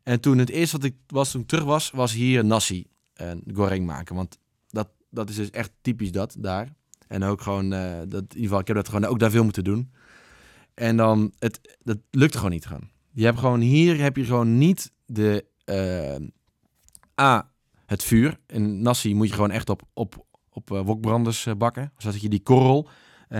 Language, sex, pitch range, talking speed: Dutch, male, 105-130 Hz, 205 wpm